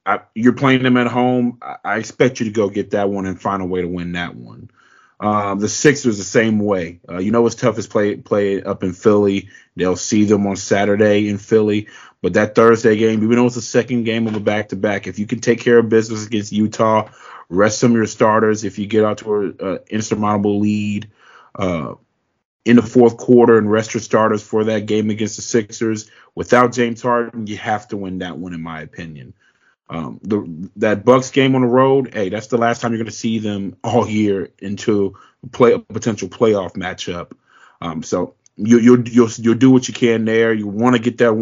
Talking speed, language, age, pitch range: 215 wpm, English, 30-49, 105-115 Hz